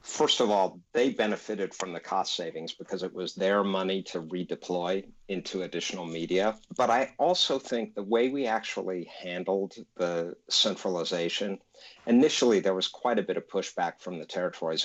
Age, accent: 50-69, American